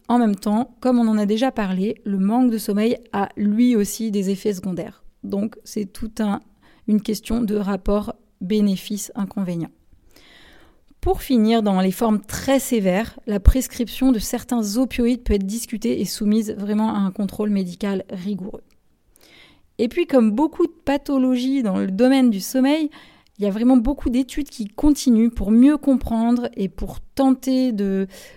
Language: French